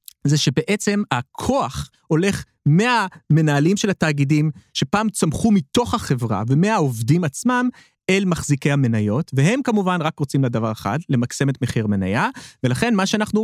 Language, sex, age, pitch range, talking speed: Hebrew, male, 30-49, 135-200 Hz, 130 wpm